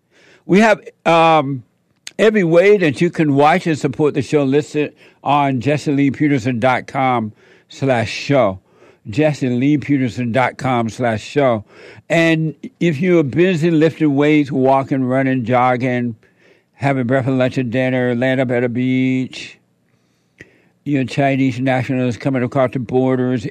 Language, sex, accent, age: English, male, American, 60-79